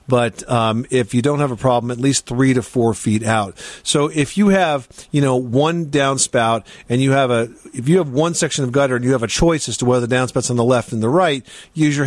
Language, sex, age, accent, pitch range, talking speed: English, male, 50-69, American, 120-145 Hz, 260 wpm